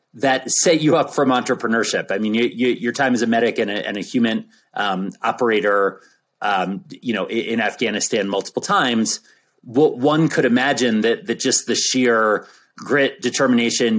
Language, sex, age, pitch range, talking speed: English, male, 30-49, 110-140 Hz, 170 wpm